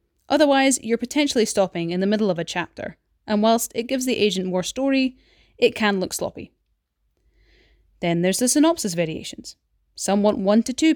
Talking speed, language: 175 wpm, English